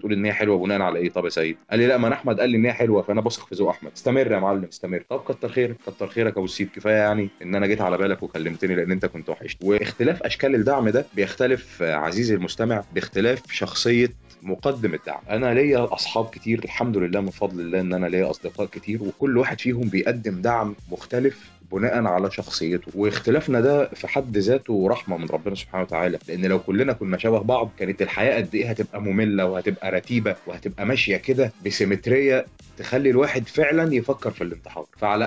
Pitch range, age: 100-125 Hz, 30-49